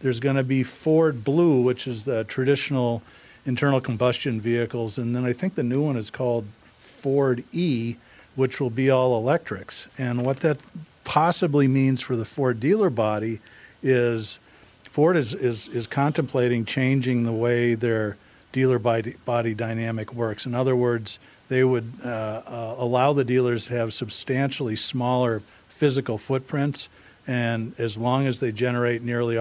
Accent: American